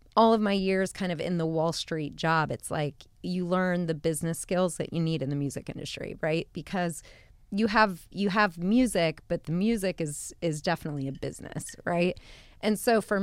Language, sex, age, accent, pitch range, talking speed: English, female, 30-49, American, 160-190 Hz, 200 wpm